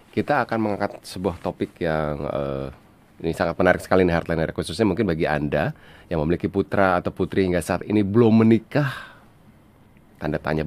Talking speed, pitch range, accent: 160 wpm, 80-105 Hz, Indonesian